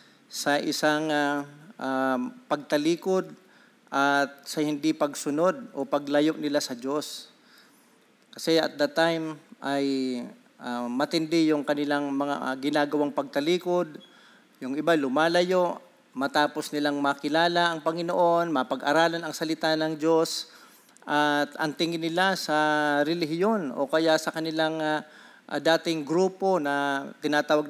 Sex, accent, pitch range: male, native, 150-180 Hz